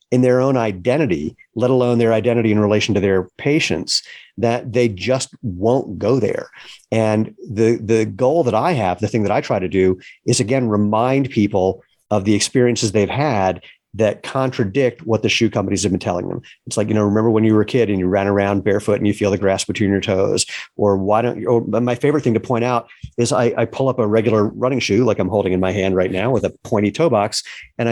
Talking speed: 235 wpm